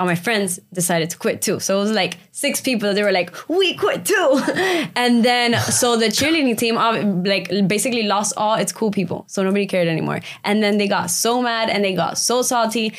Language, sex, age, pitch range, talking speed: English, female, 20-39, 185-225 Hz, 220 wpm